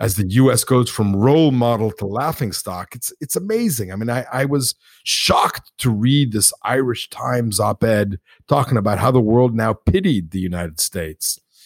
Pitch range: 110-135 Hz